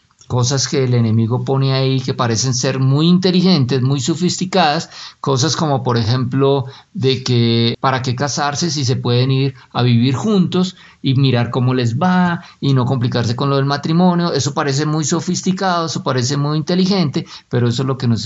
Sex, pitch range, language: male, 125-165 Hz, Spanish